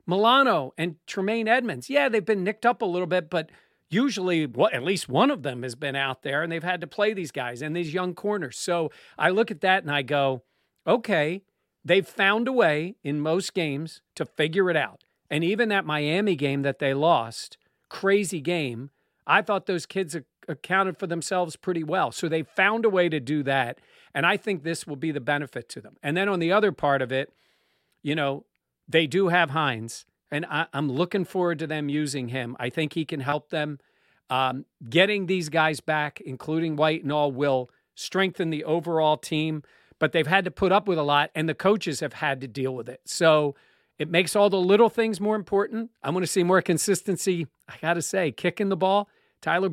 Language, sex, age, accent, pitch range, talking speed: English, male, 40-59, American, 150-195 Hz, 210 wpm